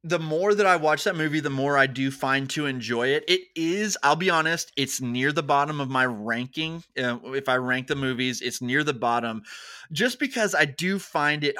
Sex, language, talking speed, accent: male, English, 215 wpm, American